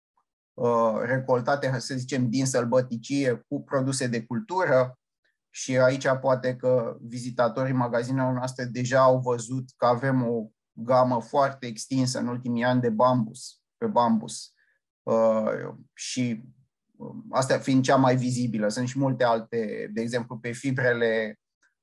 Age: 20-39